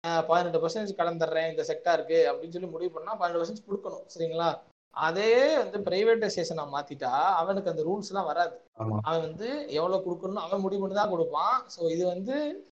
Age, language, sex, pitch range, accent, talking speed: 20-39, Tamil, male, 150-195 Hz, native, 160 wpm